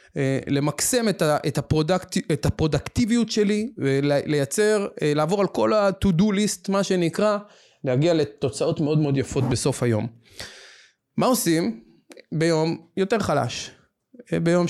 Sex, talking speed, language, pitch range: male, 100 wpm, Hebrew, 140-205 Hz